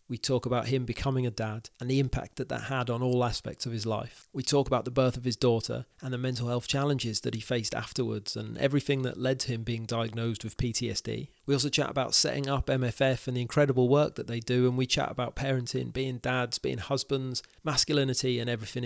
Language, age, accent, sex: English, 30-49, British, male